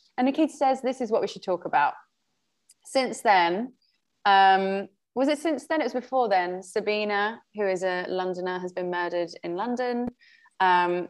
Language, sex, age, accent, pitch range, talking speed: English, female, 20-39, British, 180-240 Hz, 175 wpm